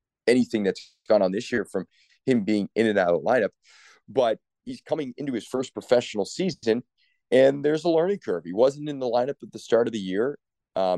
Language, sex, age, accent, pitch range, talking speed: English, male, 30-49, American, 105-135 Hz, 220 wpm